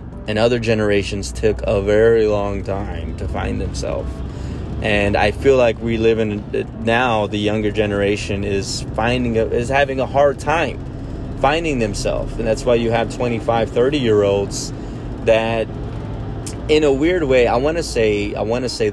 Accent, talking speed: American, 170 wpm